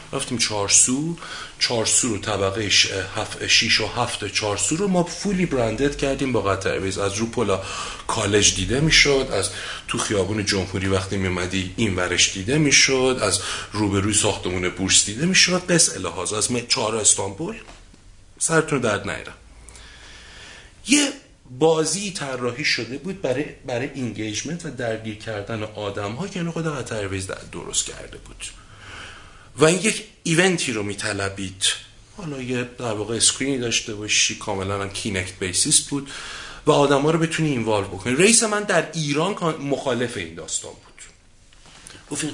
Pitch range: 100-150 Hz